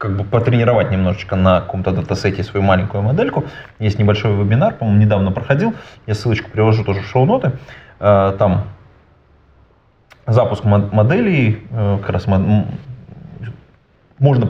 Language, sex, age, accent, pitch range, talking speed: Russian, male, 20-39, native, 100-130 Hz, 115 wpm